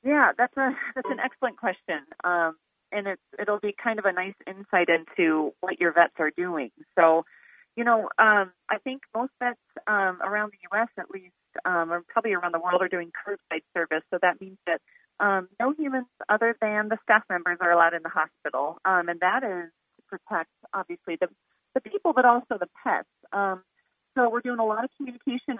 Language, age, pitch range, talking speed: English, 40-59, 185-245 Hz, 200 wpm